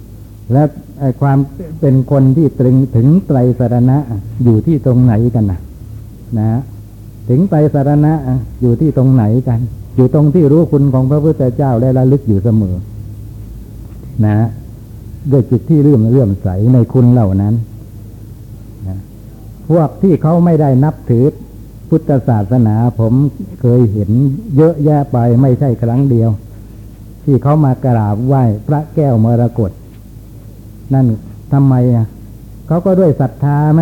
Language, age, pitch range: Thai, 60-79, 110-135 Hz